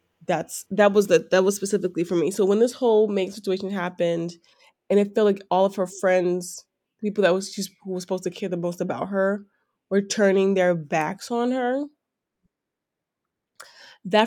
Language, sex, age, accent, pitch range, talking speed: English, female, 10-29, American, 185-220 Hz, 180 wpm